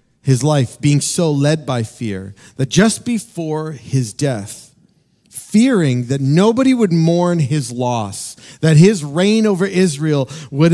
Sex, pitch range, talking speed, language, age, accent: male, 115-155 Hz, 140 wpm, English, 40-59, American